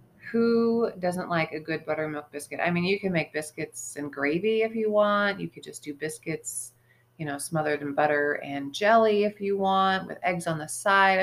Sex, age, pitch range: female, 30-49, 150-200 Hz